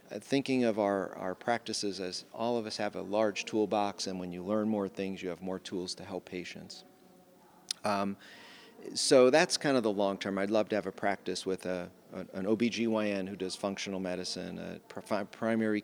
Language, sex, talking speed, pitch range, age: English, male, 190 wpm, 95-110 Hz, 40-59